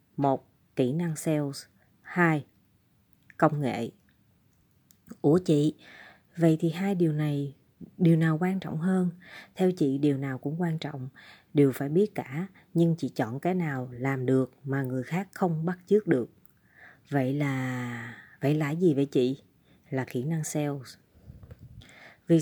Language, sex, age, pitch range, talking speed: Vietnamese, female, 20-39, 130-165 Hz, 150 wpm